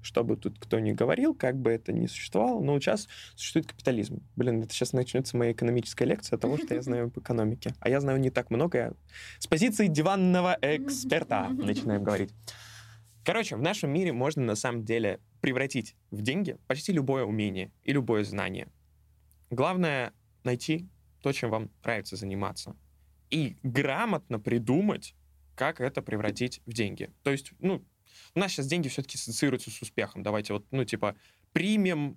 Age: 20-39